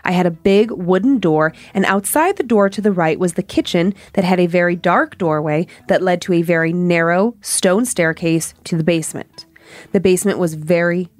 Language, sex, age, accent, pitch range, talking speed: English, female, 30-49, American, 165-205 Hz, 200 wpm